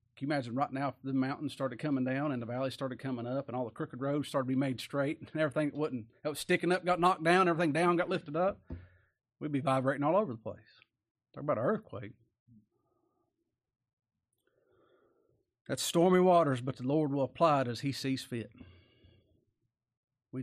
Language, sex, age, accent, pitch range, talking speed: English, male, 40-59, American, 120-150 Hz, 195 wpm